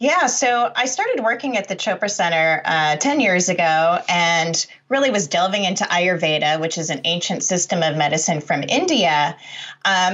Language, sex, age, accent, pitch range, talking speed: English, female, 30-49, American, 170-230 Hz, 170 wpm